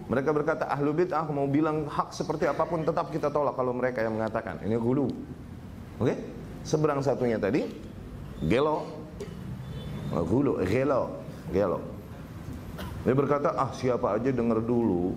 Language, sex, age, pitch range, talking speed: Indonesian, male, 30-49, 125-170 Hz, 140 wpm